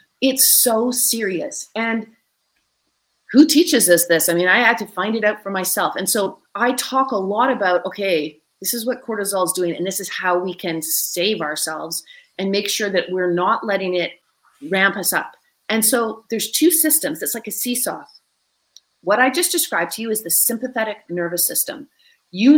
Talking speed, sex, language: 190 wpm, female, English